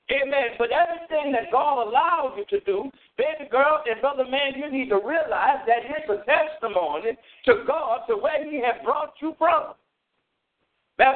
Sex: male